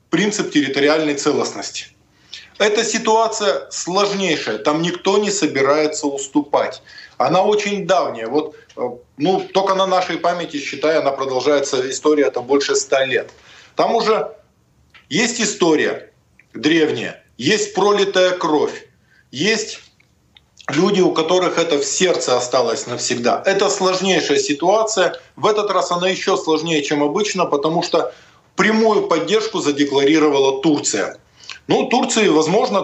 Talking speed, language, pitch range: 115 wpm, Russian, 140-190 Hz